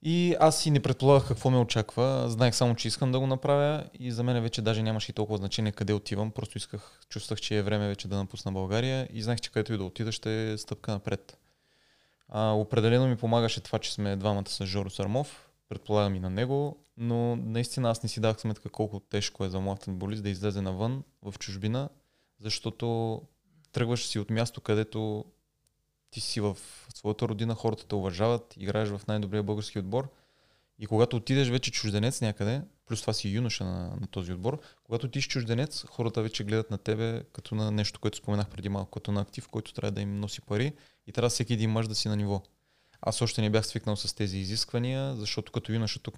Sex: male